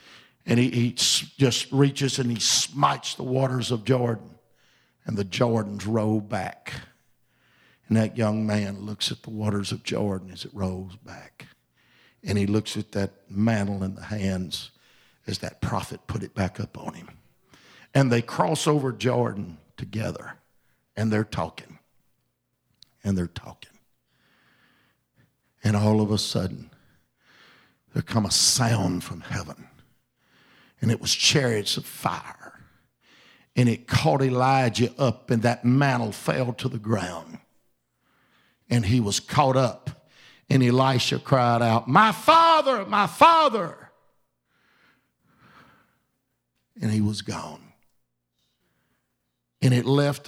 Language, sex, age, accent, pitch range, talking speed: English, male, 50-69, American, 100-125 Hz, 130 wpm